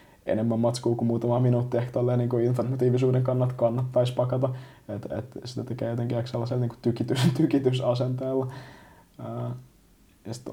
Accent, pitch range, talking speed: native, 115-125 Hz, 115 wpm